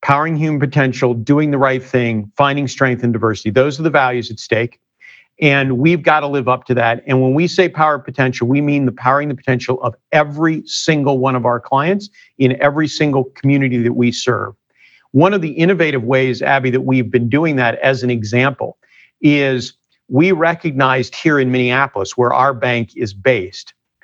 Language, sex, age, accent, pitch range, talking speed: English, male, 50-69, American, 125-155 Hz, 190 wpm